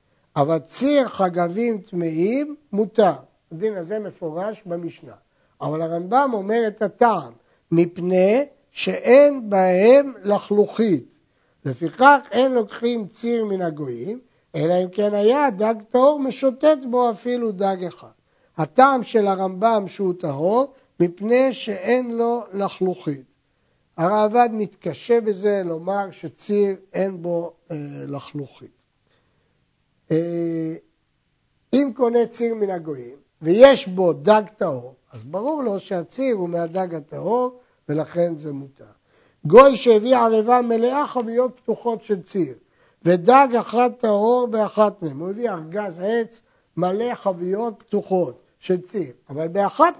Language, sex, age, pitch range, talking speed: Hebrew, male, 60-79, 175-235 Hz, 115 wpm